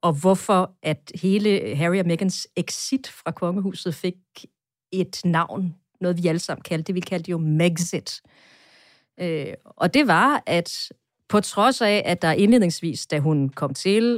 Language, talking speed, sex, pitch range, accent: Danish, 155 wpm, female, 155-195 Hz, native